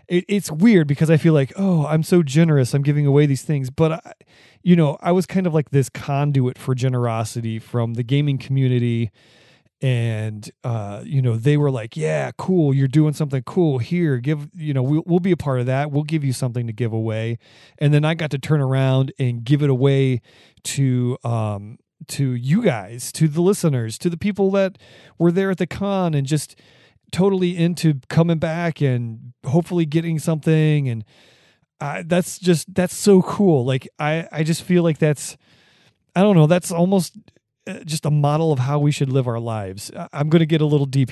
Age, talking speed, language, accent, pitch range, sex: 30-49, 200 wpm, English, American, 130-170 Hz, male